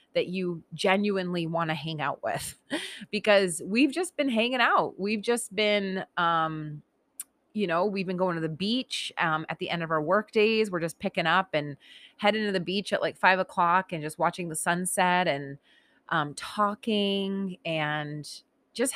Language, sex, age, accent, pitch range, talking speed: English, female, 30-49, American, 165-220 Hz, 180 wpm